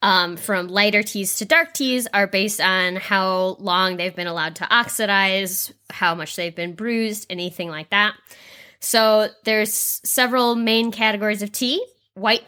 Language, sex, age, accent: English, female, 10-29, American